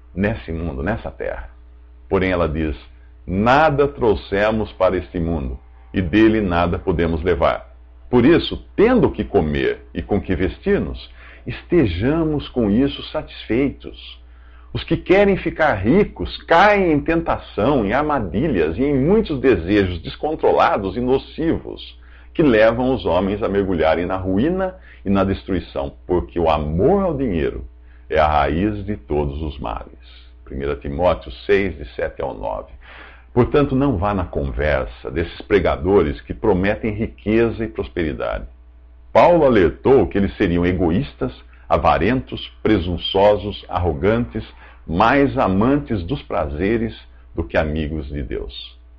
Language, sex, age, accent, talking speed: English, male, 60-79, Brazilian, 130 wpm